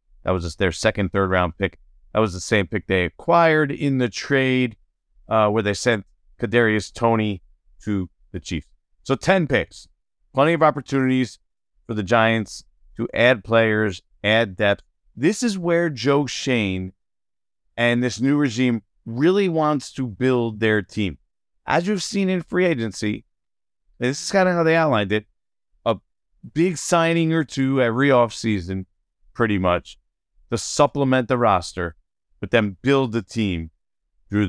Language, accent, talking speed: English, American, 155 wpm